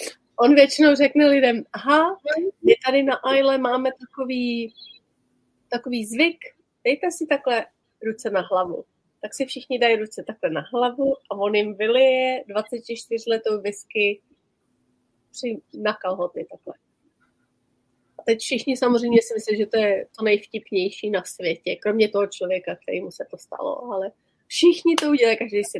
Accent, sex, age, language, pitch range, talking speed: native, female, 30-49, Czech, 205-270 Hz, 145 wpm